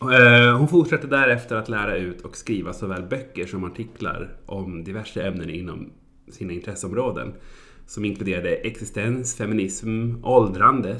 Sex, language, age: male, Swedish, 30-49